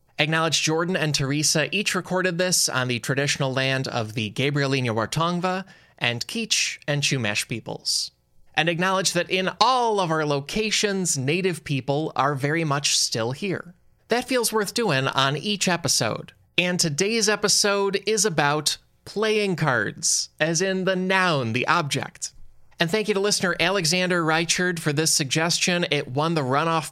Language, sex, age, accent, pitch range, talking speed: English, male, 20-39, American, 135-185 Hz, 155 wpm